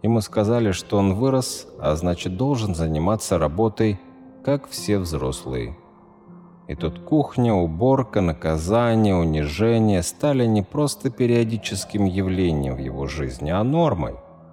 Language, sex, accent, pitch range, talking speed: Russian, male, native, 80-120 Hz, 120 wpm